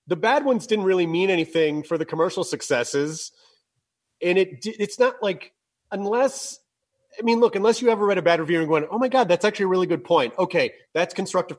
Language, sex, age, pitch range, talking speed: English, male, 30-49, 160-220 Hz, 210 wpm